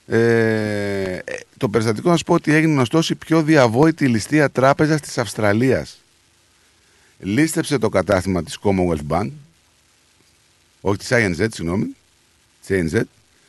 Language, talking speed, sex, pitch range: Greek, 115 wpm, male, 95-140 Hz